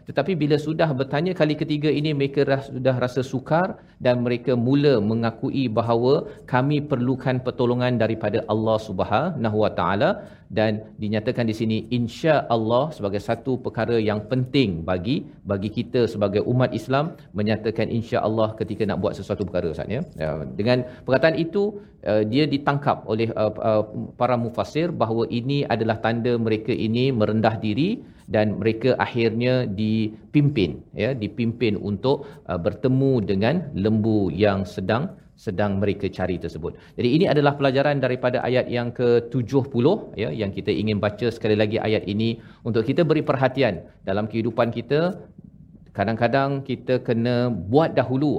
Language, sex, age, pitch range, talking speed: Malayalam, male, 40-59, 110-135 Hz, 140 wpm